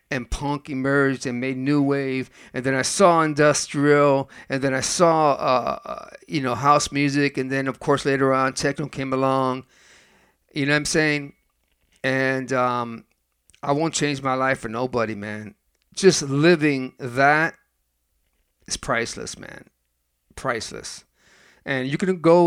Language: English